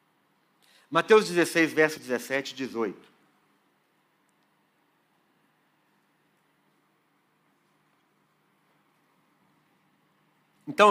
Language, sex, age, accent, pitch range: Portuguese, male, 60-79, Brazilian, 165-265 Hz